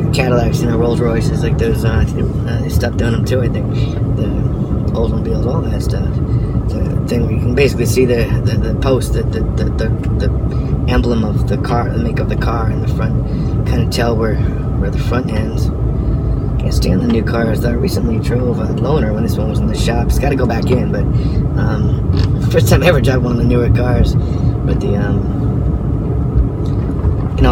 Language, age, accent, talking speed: English, 20-39, American, 210 wpm